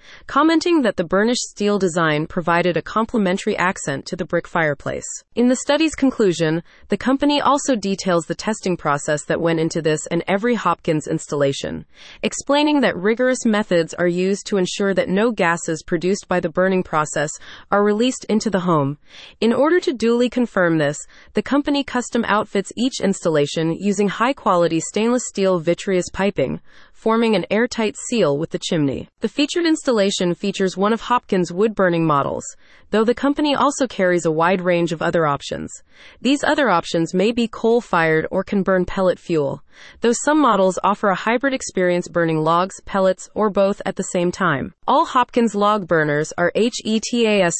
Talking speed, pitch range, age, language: 165 wpm, 170-230 Hz, 30-49, English